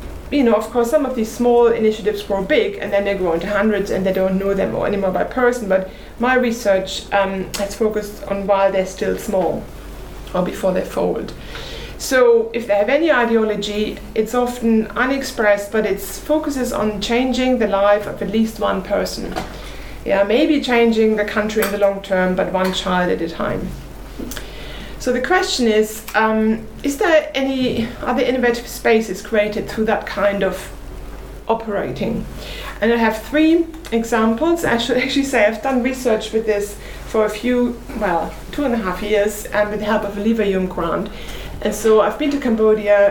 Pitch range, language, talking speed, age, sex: 205-245 Hz, English, 180 wpm, 30-49, female